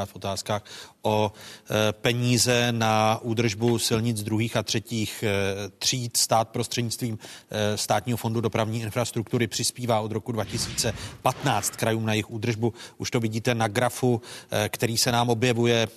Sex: male